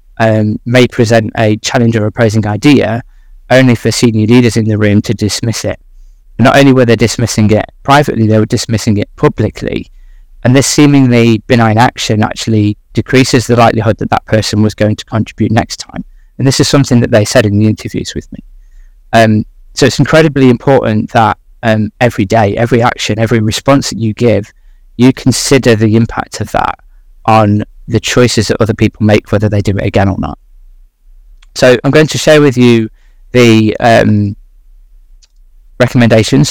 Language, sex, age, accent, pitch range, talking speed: English, male, 20-39, British, 110-125 Hz, 180 wpm